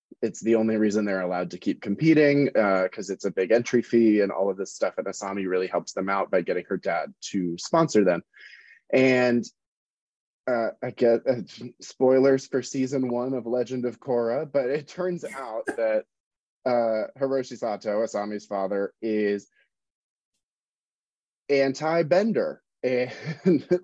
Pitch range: 105-135 Hz